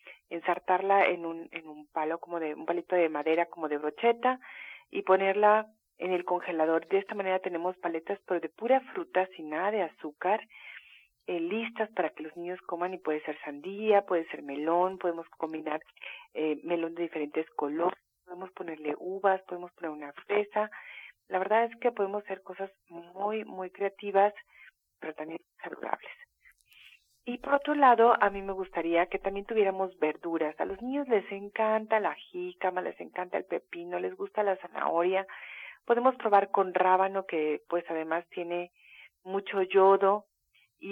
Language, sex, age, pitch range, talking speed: Spanish, female, 40-59, 170-205 Hz, 165 wpm